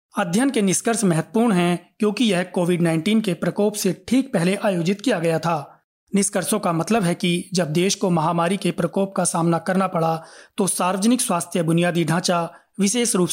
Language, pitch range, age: Hindi, 175-210 Hz, 30-49